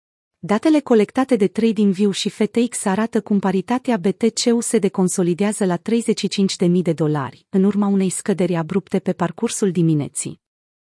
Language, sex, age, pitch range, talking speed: Romanian, female, 30-49, 180-220 Hz, 135 wpm